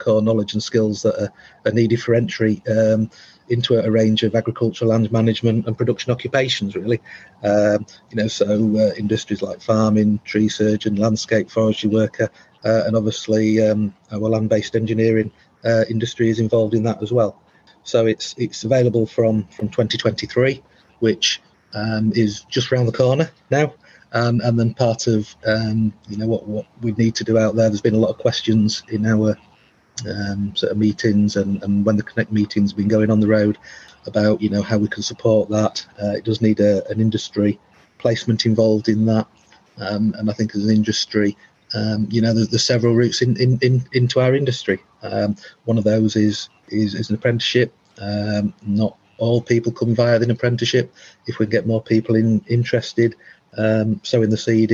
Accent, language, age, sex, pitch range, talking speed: British, English, 40-59, male, 105-115 Hz, 195 wpm